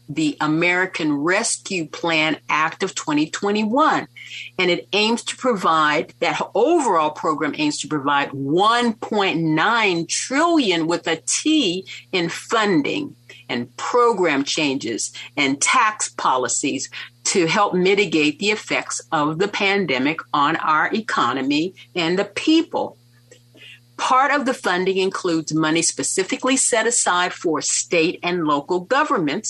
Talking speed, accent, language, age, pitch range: 120 wpm, American, English, 50-69, 145-210 Hz